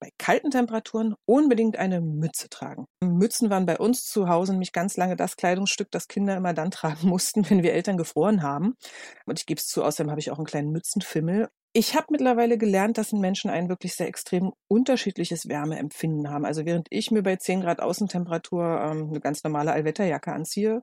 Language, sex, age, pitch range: German, female, 40-59, 165-215 Hz